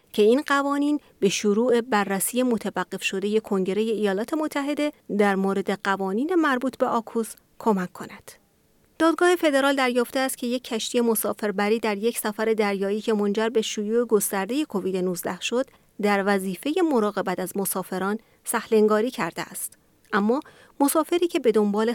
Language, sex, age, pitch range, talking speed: Persian, female, 30-49, 200-250 Hz, 150 wpm